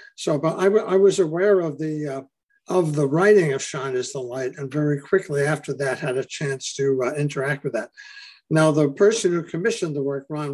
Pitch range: 140-195 Hz